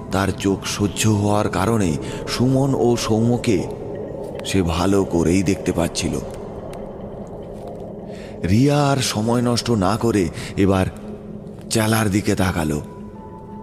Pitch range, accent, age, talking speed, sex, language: 90-110 Hz, native, 30-49, 45 wpm, male, Bengali